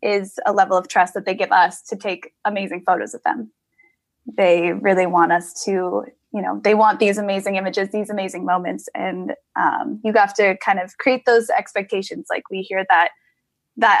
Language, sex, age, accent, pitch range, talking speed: English, female, 10-29, American, 190-225 Hz, 195 wpm